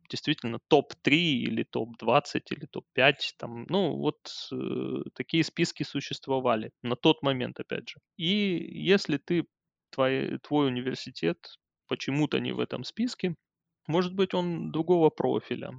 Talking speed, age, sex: 125 wpm, 20-39, male